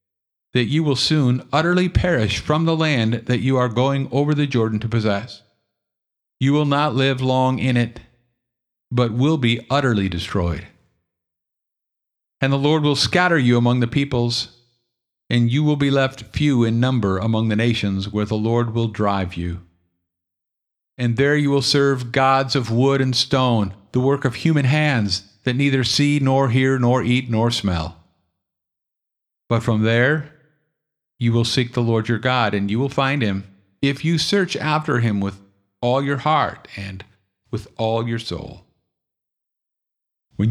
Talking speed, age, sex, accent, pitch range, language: 165 wpm, 50-69, male, American, 105-140 Hz, English